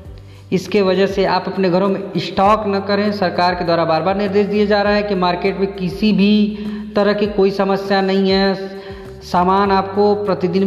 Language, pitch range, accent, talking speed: Hindi, 180-195 Hz, native, 190 wpm